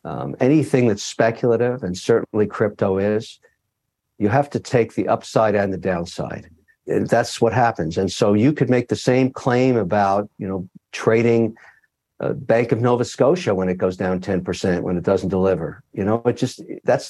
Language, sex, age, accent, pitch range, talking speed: English, male, 50-69, American, 95-125 Hz, 185 wpm